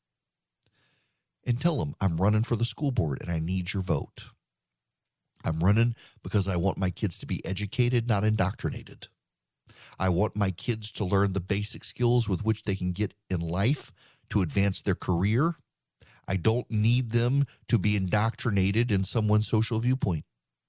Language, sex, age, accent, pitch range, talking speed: English, male, 40-59, American, 95-120 Hz, 165 wpm